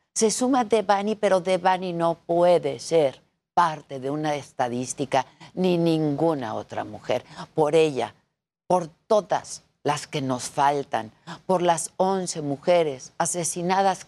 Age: 50-69